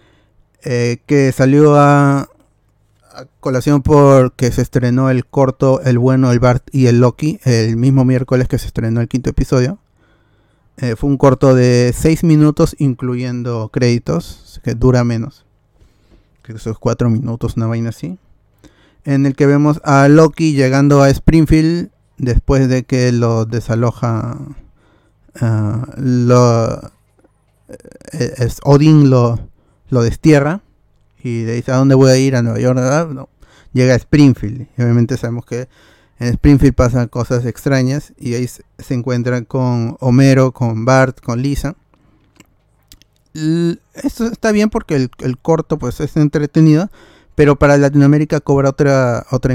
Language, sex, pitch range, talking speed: Spanish, male, 120-140 Hz, 145 wpm